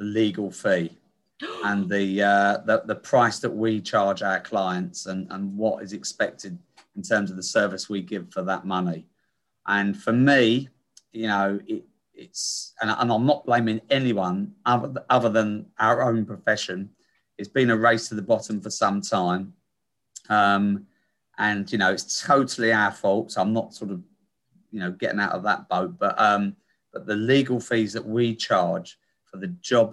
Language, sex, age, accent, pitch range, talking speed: English, male, 30-49, British, 100-125 Hz, 175 wpm